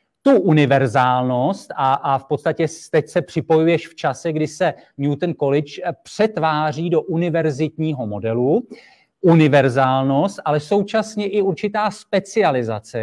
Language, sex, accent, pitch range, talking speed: Czech, male, native, 150-190 Hz, 115 wpm